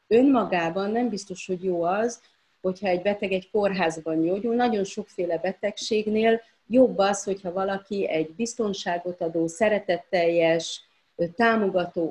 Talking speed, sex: 120 wpm, female